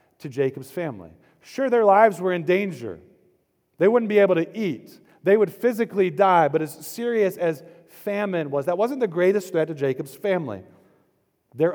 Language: English